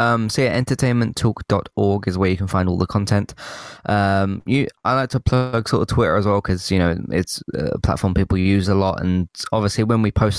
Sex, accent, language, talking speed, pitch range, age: male, British, English, 220 wpm, 95-110 Hz, 20-39